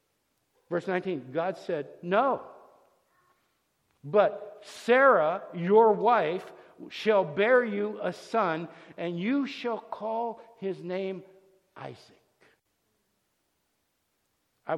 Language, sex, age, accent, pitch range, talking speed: English, male, 60-79, American, 155-220 Hz, 90 wpm